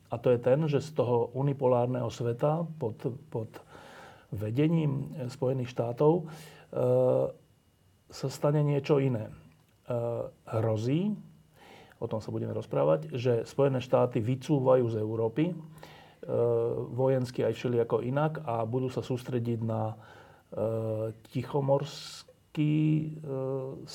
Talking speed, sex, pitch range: 115 wpm, male, 115-145 Hz